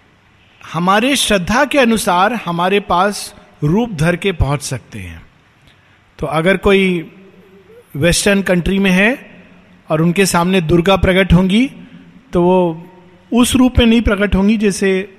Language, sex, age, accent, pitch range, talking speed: Hindi, male, 50-69, native, 145-195 Hz, 135 wpm